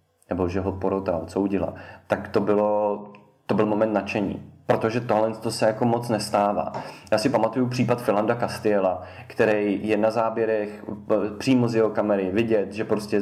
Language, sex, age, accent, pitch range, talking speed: Czech, male, 20-39, native, 100-110 Hz, 160 wpm